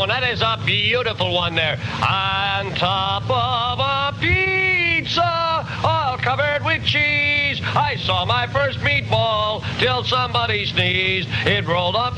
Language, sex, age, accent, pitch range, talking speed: English, male, 50-69, American, 115-175 Hz, 130 wpm